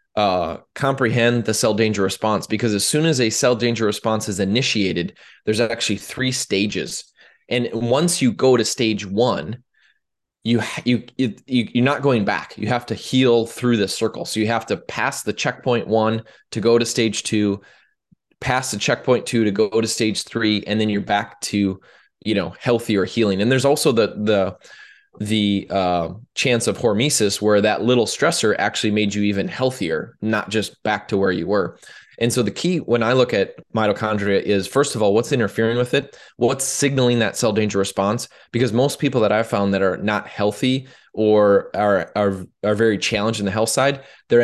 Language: English